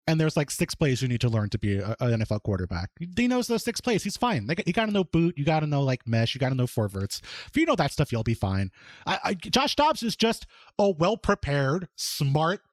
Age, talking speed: 30-49, 260 wpm